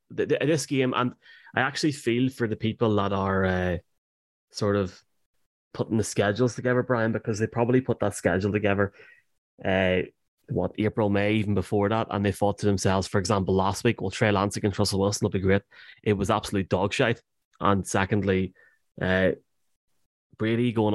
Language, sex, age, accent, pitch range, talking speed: English, male, 20-39, Irish, 100-115 Hz, 175 wpm